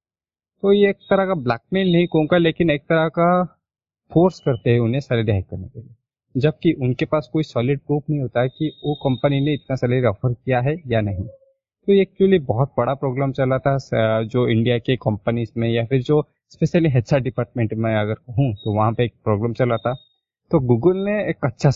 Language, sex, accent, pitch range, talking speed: Hindi, male, native, 115-155 Hz, 205 wpm